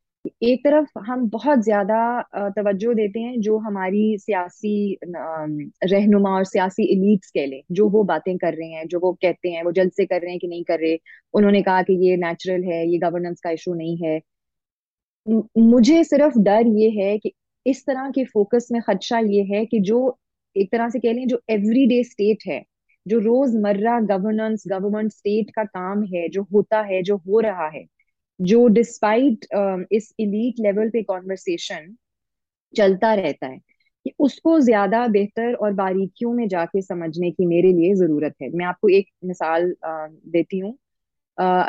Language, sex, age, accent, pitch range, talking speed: English, female, 30-49, Indian, 180-230 Hz, 175 wpm